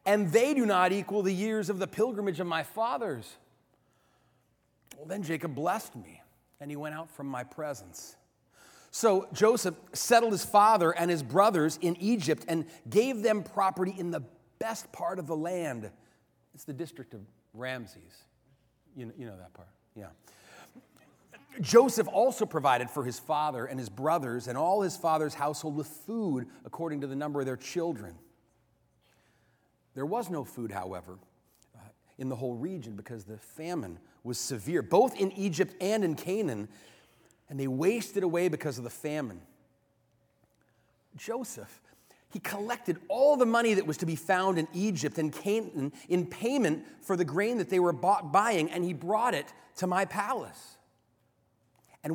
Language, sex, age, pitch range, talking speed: English, male, 40-59, 130-200 Hz, 160 wpm